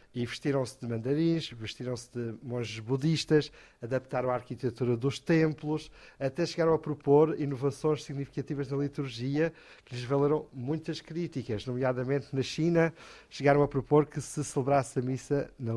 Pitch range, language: 125-145 Hz, Portuguese